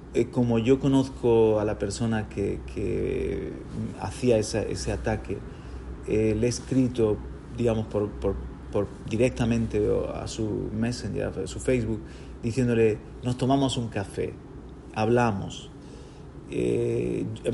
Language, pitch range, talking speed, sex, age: Spanish, 110-130 Hz, 115 wpm, male, 30-49